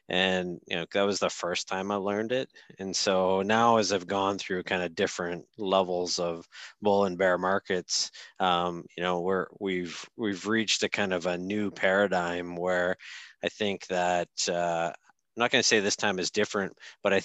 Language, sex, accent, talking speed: English, male, American, 190 wpm